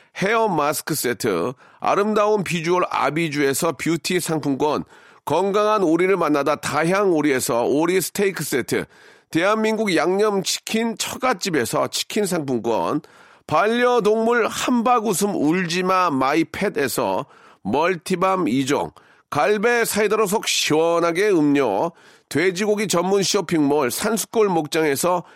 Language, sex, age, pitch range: Korean, male, 40-59, 165-220 Hz